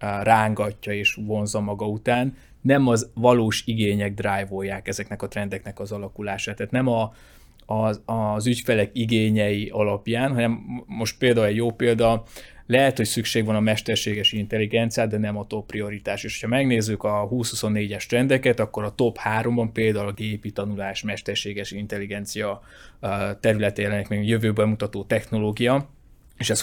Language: Hungarian